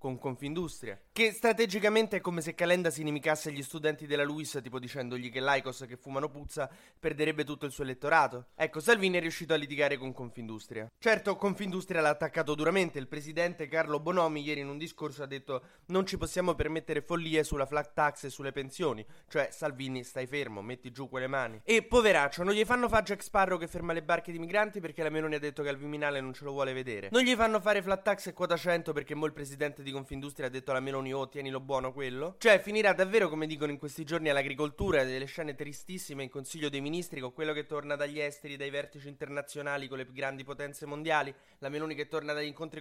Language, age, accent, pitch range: Italian, 20-39, native, 140-175 Hz